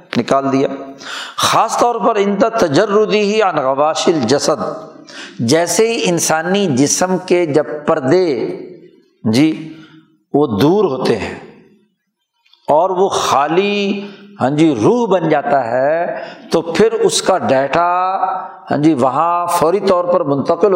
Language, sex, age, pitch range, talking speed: Urdu, male, 60-79, 145-195 Hz, 125 wpm